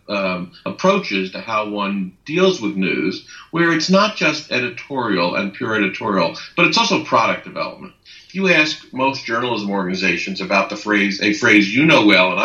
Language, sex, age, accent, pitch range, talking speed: English, male, 50-69, American, 100-155 Hz, 175 wpm